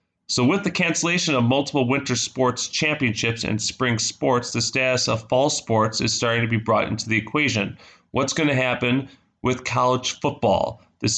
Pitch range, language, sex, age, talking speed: 110-130 Hz, English, male, 30-49, 175 wpm